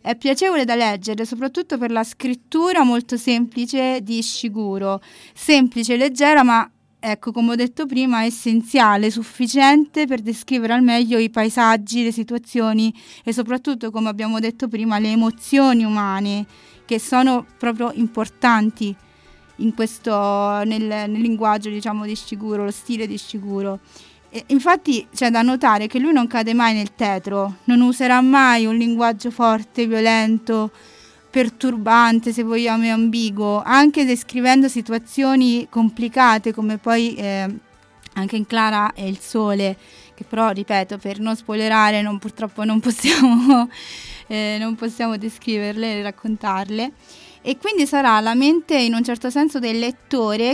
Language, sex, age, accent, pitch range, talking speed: Italian, female, 20-39, native, 220-250 Hz, 135 wpm